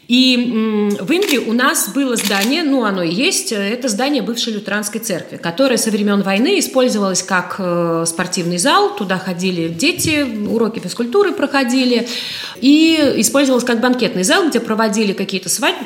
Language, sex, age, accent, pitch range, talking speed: Russian, female, 30-49, native, 185-240 Hz, 150 wpm